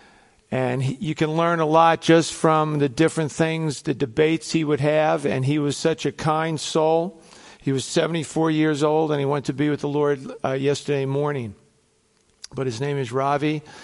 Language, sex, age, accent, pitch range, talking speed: English, male, 50-69, American, 135-160 Hz, 190 wpm